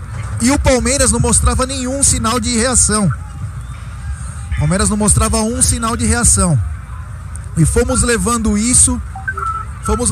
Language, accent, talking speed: Portuguese, Brazilian, 130 wpm